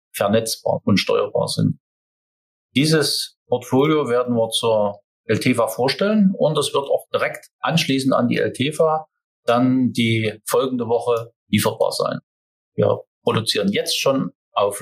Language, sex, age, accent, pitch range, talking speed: German, male, 50-69, German, 110-150 Hz, 125 wpm